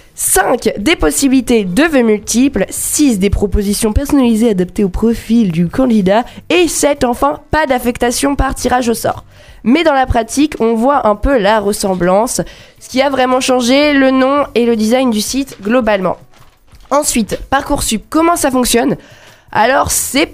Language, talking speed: French, 160 wpm